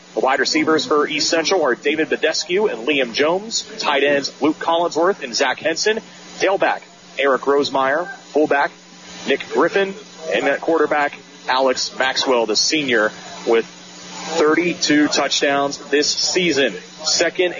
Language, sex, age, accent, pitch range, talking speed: English, male, 30-49, American, 140-180 Hz, 130 wpm